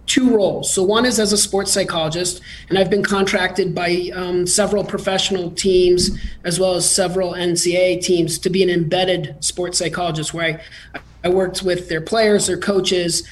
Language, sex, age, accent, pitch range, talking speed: English, male, 30-49, American, 170-200 Hz, 175 wpm